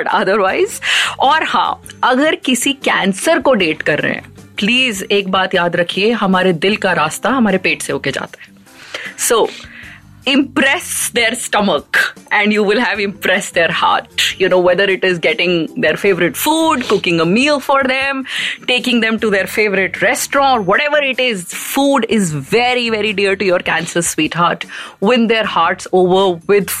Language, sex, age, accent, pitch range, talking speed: Hindi, female, 30-49, native, 175-230 Hz, 145 wpm